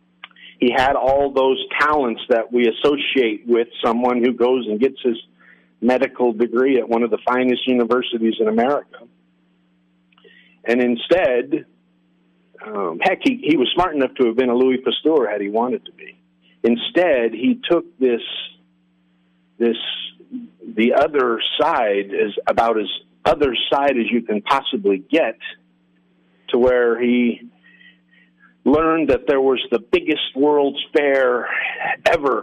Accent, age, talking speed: American, 50-69, 140 wpm